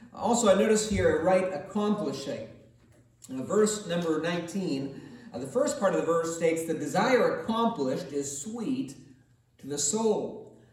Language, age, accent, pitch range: English, 40-59, American, 145-230 Hz